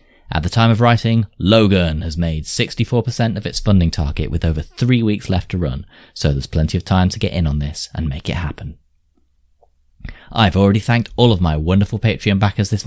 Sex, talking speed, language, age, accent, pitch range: male, 205 wpm, English, 30-49, British, 80-105 Hz